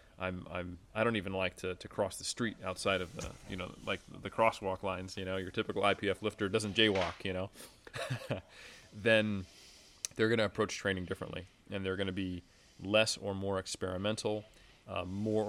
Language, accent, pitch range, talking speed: Italian, American, 95-110 Hz, 185 wpm